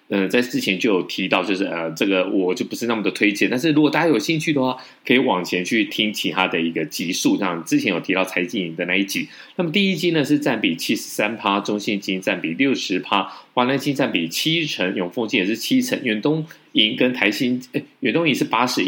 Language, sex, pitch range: Chinese, male, 100-155 Hz